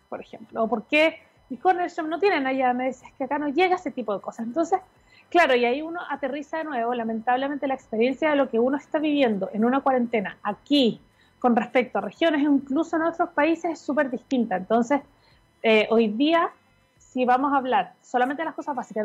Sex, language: female, Spanish